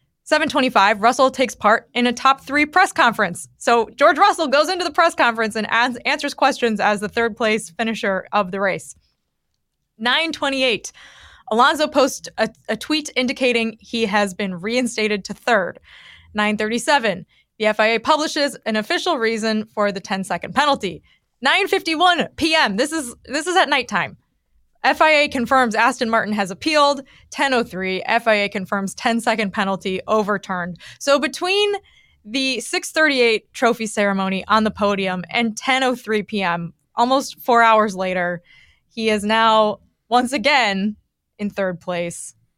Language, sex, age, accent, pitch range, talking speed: English, female, 20-39, American, 195-260 Hz, 140 wpm